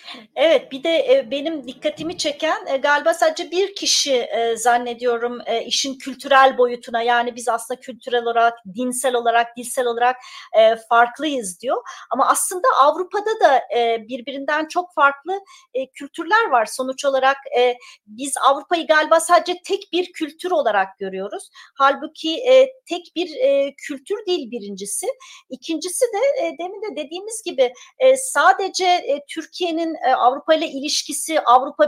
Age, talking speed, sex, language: 40-59, 120 wpm, female, Turkish